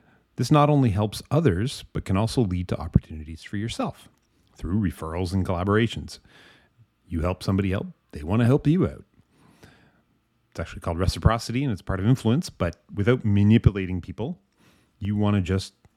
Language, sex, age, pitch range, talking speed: English, male, 30-49, 90-115 Hz, 165 wpm